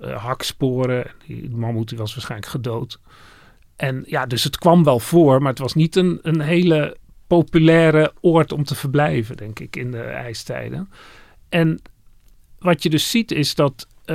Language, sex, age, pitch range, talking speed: Dutch, male, 40-59, 120-155 Hz, 175 wpm